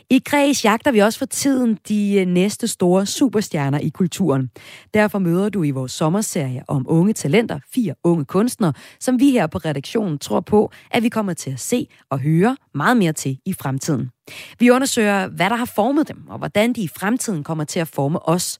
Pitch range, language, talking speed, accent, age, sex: 145-210 Hz, Danish, 200 wpm, native, 30-49, female